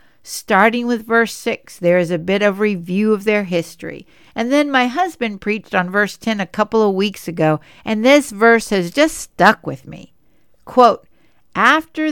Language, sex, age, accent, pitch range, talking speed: English, female, 60-79, American, 175-270 Hz, 180 wpm